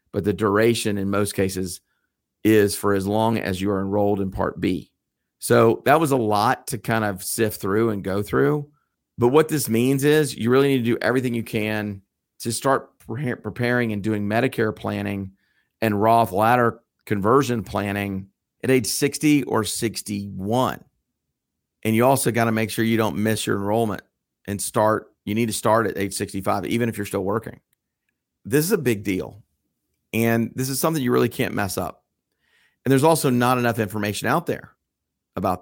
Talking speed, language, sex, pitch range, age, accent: 185 wpm, English, male, 100-115 Hz, 40-59, American